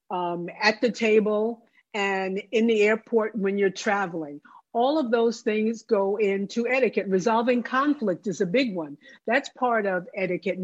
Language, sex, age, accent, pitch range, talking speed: English, female, 50-69, American, 195-245 Hz, 160 wpm